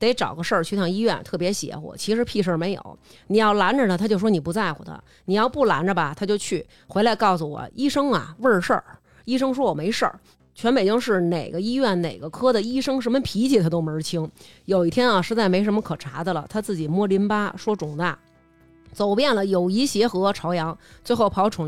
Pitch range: 175-235 Hz